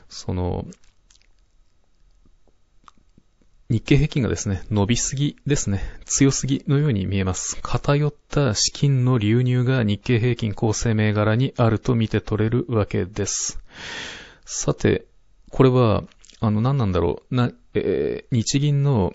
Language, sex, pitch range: Japanese, male, 100-125 Hz